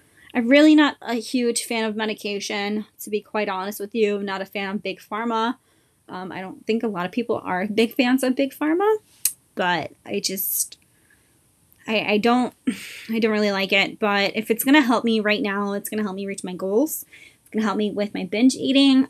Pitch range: 195-235 Hz